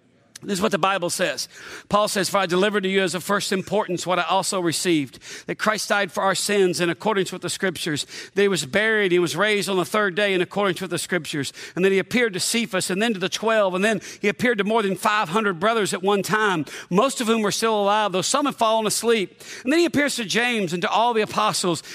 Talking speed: 255 wpm